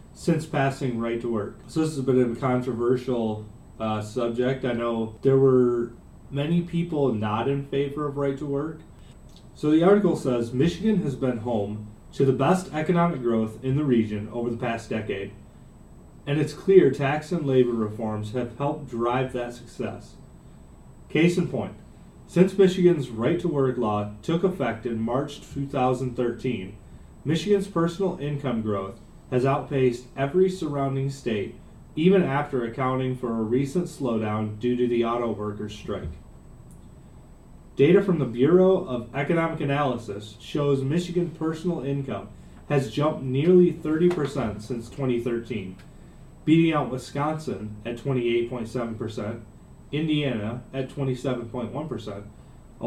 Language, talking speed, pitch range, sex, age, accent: English, 135 wpm, 115-145 Hz, male, 30-49, American